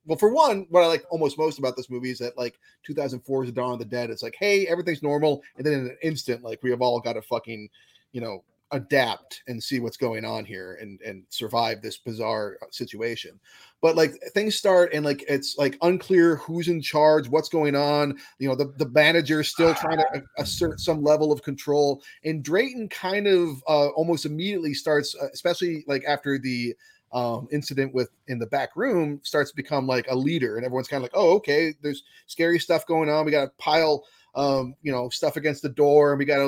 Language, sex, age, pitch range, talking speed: English, male, 30-49, 130-160 Hz, 225 wpm